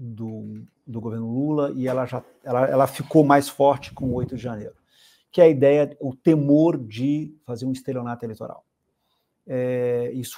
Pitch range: 120-150 Hz